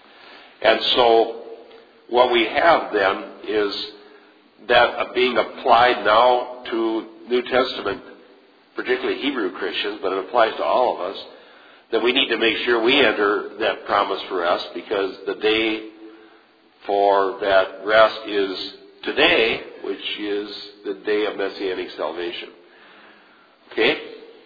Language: English